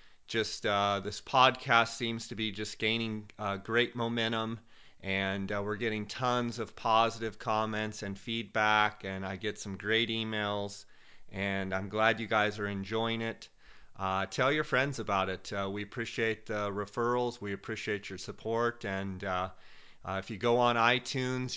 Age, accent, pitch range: 40-59, American, 100-115 Hz